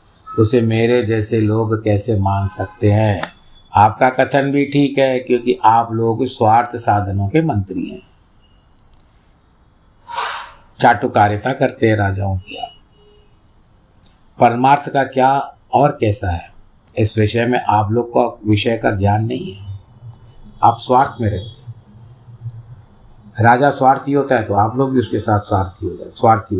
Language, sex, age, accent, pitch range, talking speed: Hindi, male, 50-69, native, 105-125 Hz, 140 wpm